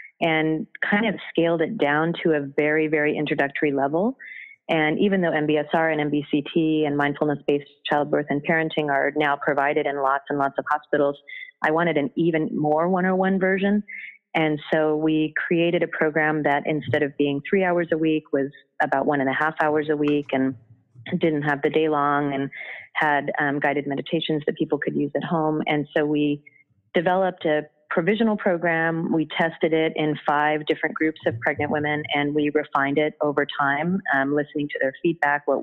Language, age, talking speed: English, 30-49, 180 wpm